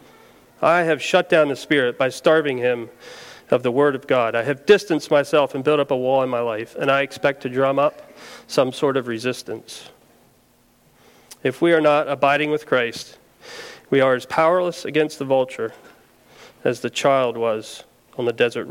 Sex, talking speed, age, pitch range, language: male, 185 wpm, 40-59, 130-150 Hz, English